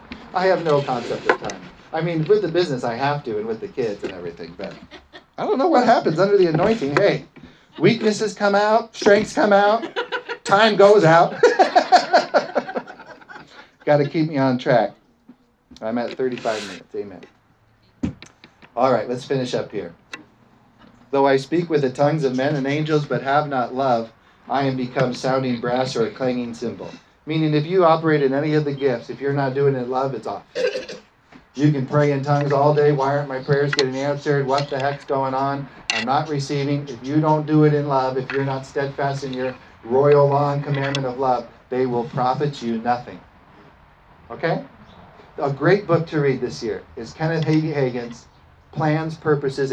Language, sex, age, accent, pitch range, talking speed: English, male, 40-59, American, 130-155 Hz, 190 wpm